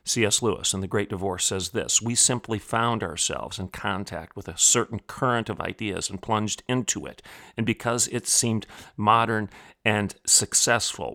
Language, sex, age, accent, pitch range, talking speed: English, male, 40-59, American, 95-115 Hz, 165 wpm